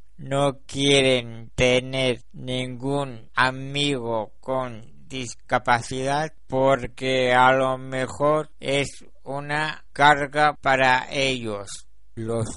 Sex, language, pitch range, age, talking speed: male, Spanish, 125-150 Hz, 60-79, 80 wpm